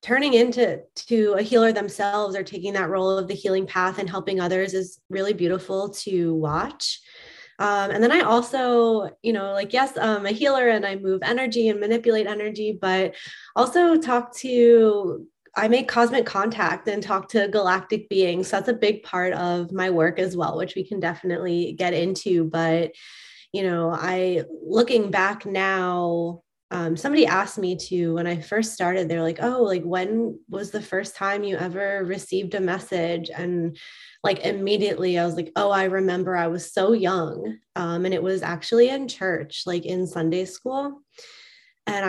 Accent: American